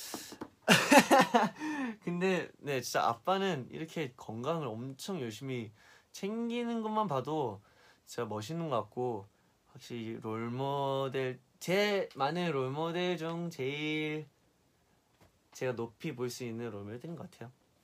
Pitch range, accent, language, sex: 115-165 Hz, native, Korean, male